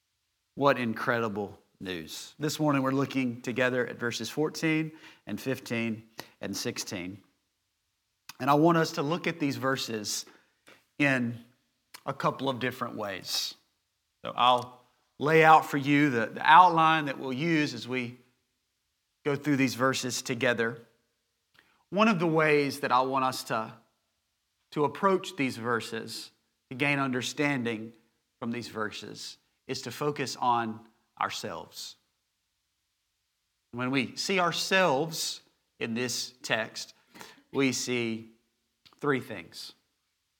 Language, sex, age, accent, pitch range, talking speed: English, male, 40-59, American, 110-145 Hz, 125 wpm